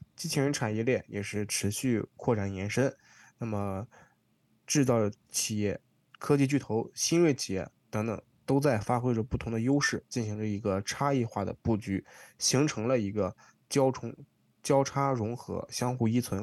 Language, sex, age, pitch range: Chinese, male, 20-39, 105-130 Hz